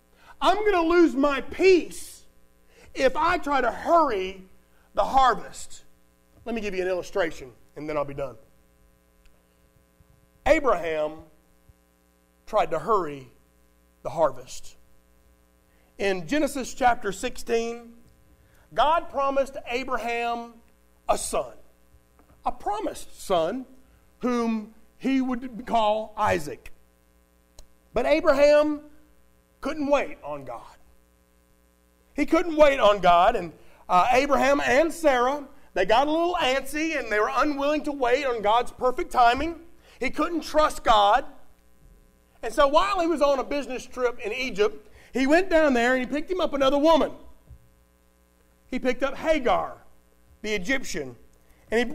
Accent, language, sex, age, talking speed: American, English, male, 40-59, 130 wpm